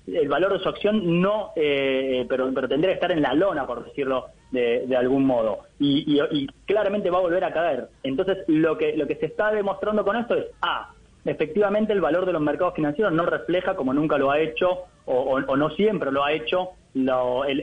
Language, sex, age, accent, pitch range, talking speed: Spanish, male, 30-49, Argentinian, 150-200 Hz, 220 wpm